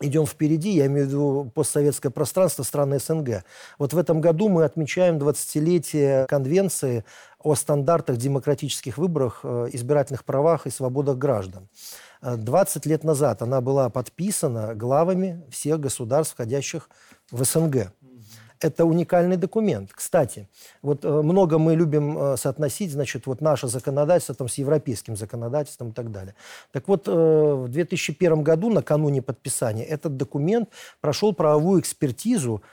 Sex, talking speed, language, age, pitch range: male, 135 wpm, Russian, 40-59, 130-165 Hz